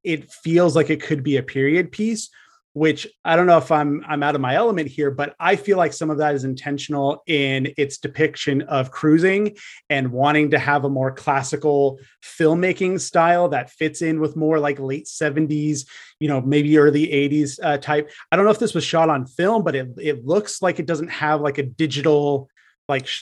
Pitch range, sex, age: 140-165 Hz, male, 30-49